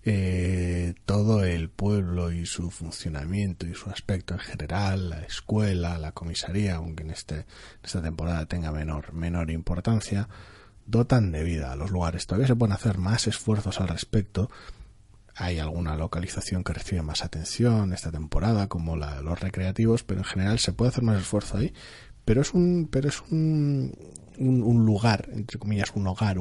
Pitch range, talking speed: 85-110 Hz, 170 wpm